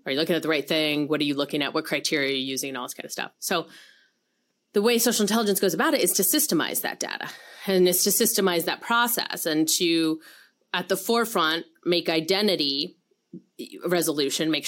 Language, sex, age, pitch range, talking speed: English, female, 30-49, 150-180 Hz, 210 wpm